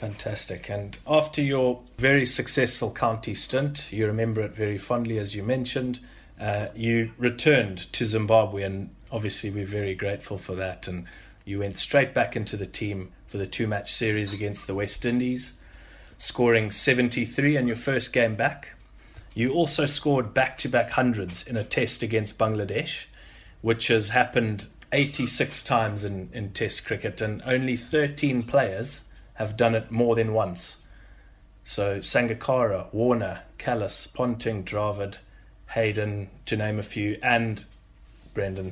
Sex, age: male, 30-49